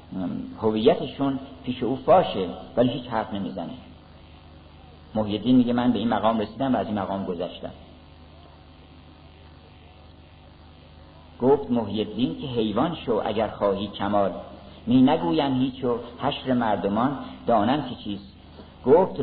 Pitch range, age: 80-125 Hz, 50-69